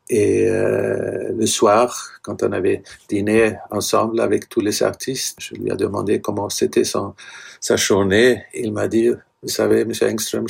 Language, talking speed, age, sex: French, 170 wpm, 60-79, male